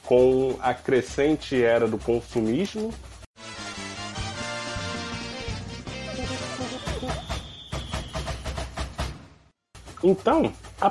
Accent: Brazilian